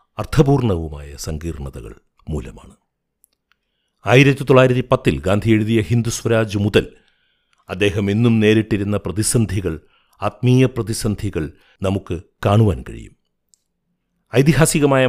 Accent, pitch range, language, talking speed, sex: native, 95-115 Hz, Malayalam, 85 wpm, male